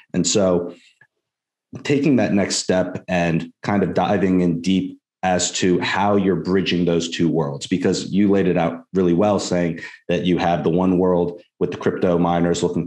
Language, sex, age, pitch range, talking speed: English, male, 30-49, 85-90 Hz, 180 wpm